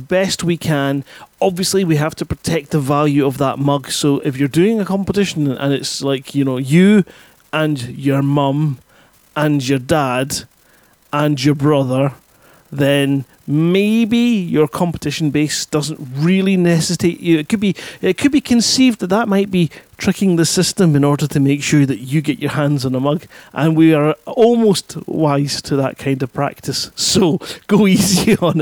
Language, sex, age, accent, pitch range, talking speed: English, male, 30-49, British, 140-180 Hz, 175 wpm